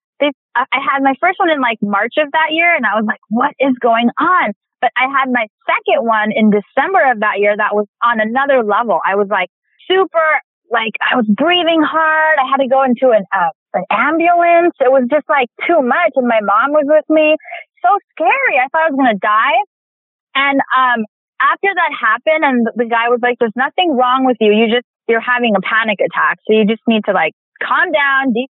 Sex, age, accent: female, 20-39, American